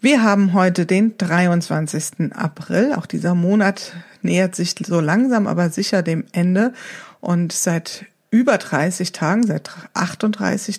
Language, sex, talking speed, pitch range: German, female, 135 wpm, 175-215 Hz